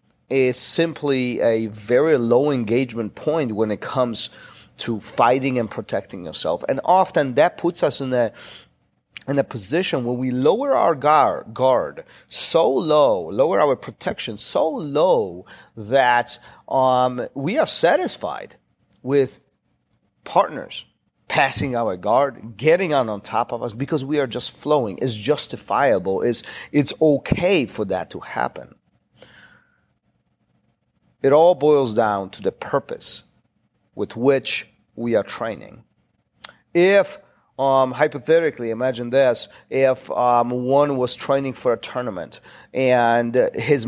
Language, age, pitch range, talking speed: English, 40-59, 120-155 Hz, 130 wpm